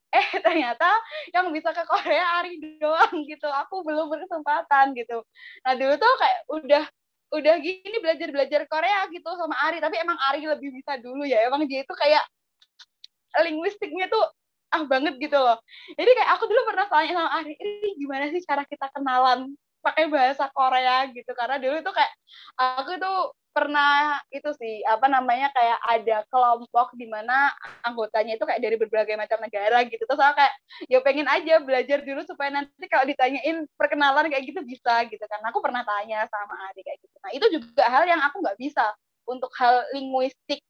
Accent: native